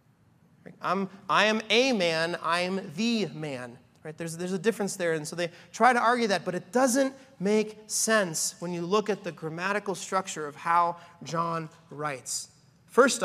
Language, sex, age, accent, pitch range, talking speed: English, male, 30-49, American, 155-210 Hz, 175 wpm